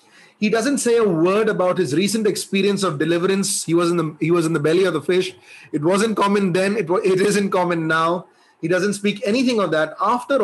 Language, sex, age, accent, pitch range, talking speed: English, male, 30-49, Indian, 170-215 Hz, 235 wpm